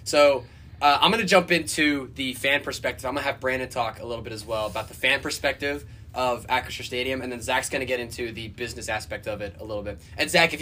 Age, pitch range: 20-39, 110-145 Hz